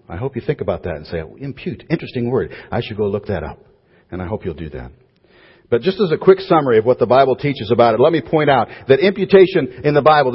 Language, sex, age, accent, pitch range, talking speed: English, male, 50-69, American, 125-175 Hz, 260 wpm